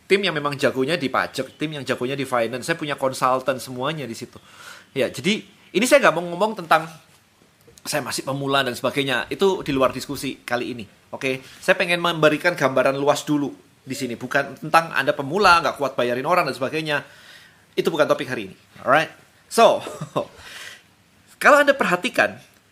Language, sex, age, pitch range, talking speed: Indonesian, male, 30-49, 135-175 Hz, 170 wpm